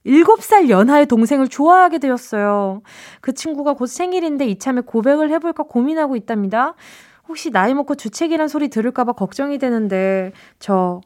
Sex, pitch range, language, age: female, 195-315 Hz, Korean, 20-39